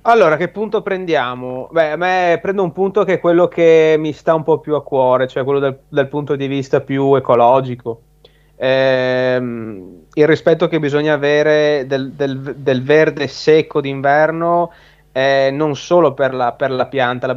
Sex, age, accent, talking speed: male, 30-49, native, 175 wpm